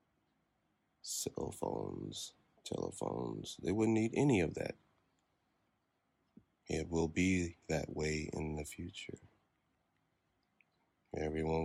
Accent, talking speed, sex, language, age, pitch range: American, 95 wpm, male, English, 30-49, 75-95 Hz